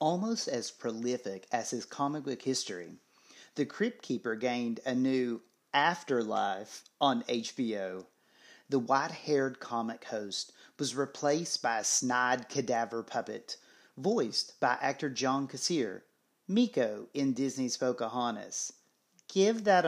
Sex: male